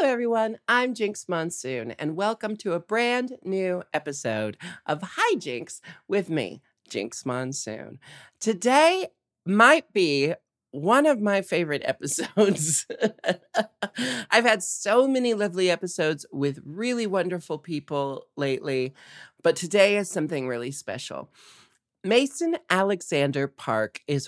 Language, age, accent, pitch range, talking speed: English, 40-59, American, 140-205 Hz, 115 wpm